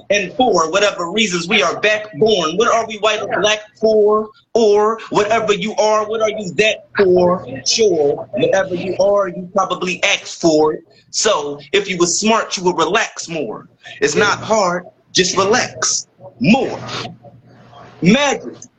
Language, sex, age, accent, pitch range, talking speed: English, male, 30-49, American, 185-225 Hz, 155 wpm